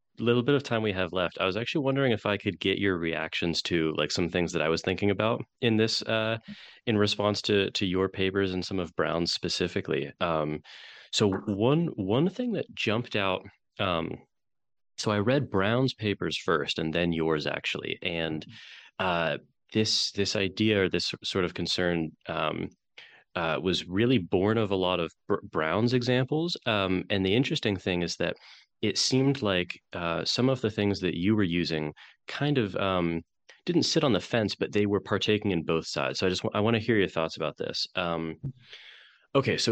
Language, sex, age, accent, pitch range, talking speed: English, male, 30-49, American, 85-110 Hz, 195 wpm